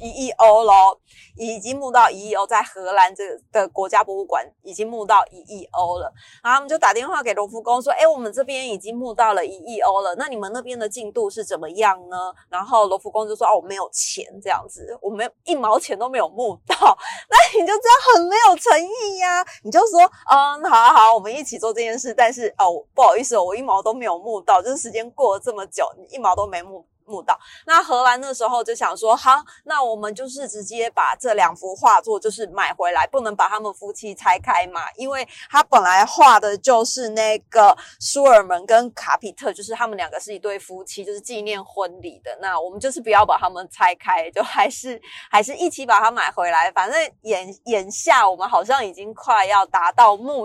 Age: 30-49